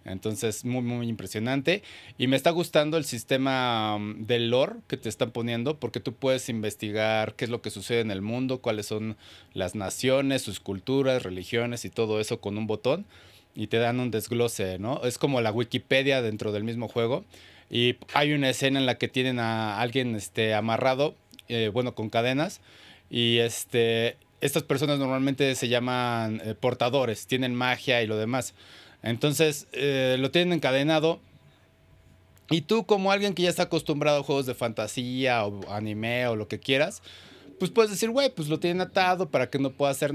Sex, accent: male, Mexican